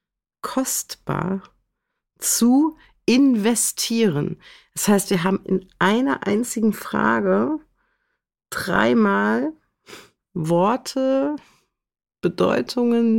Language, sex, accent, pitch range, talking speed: German, female, German, 155-205 Hz, 65 wpm